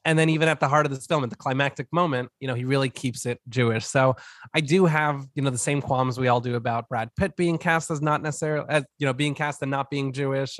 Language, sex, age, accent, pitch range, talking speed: English, male, 20-39, American, 120-155 Hz, 270 wpm